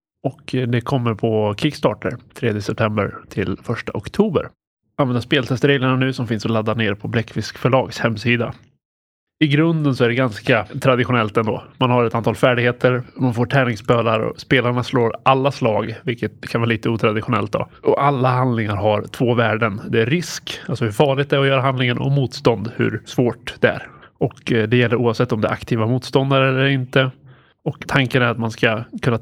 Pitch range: 115-135 Hz